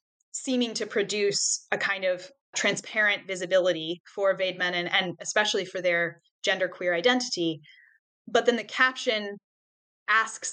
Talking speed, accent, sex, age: 130 wpm, American, female, 20-39